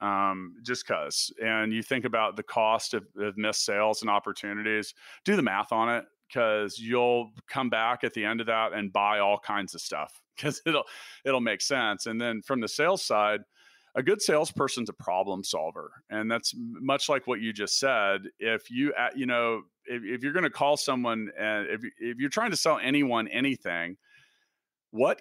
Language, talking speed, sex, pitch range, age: English, 195 wpm, male, 110-140 Hz, 40-59